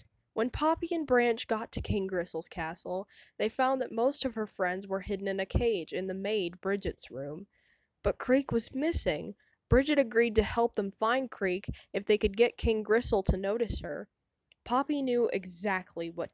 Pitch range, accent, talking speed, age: 185-245 Hz, American, 185 wpm, 10-29